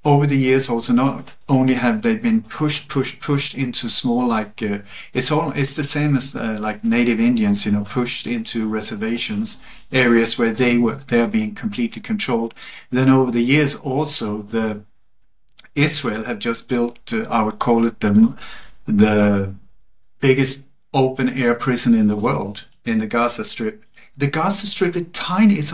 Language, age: English, 50-69